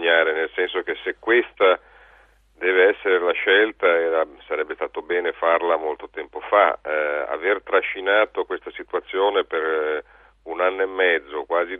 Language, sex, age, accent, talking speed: Italian, male, 40-59, native, 140 wpm